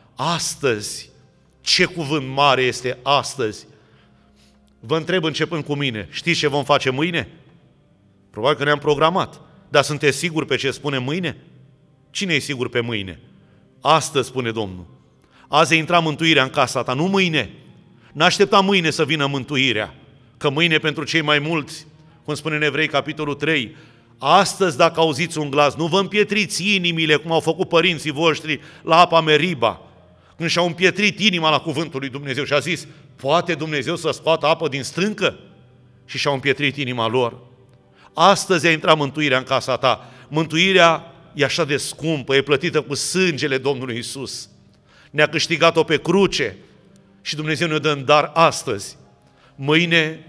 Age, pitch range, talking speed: 30-49, 135-165 Hz, 155 wpm